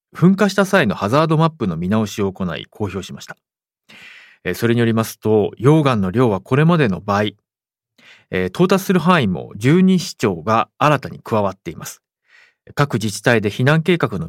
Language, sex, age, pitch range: Japanese, male, 40-59, 105-160 Hz